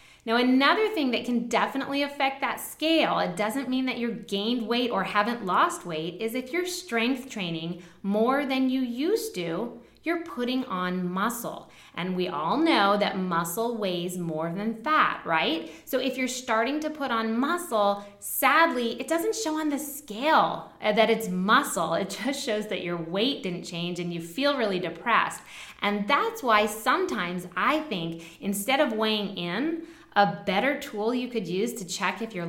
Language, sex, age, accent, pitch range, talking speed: English, female, 20-39, American, 185-255 Hz, 175 wpm